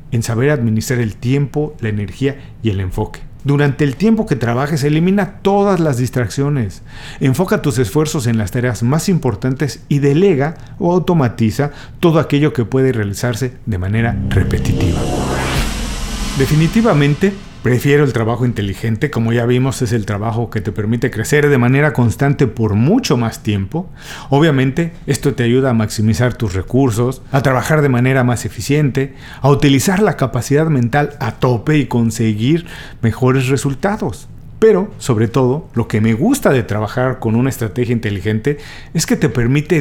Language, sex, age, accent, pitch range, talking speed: Spanish, male, 50-69, Mexican, 115-145 Hz, 155 wpm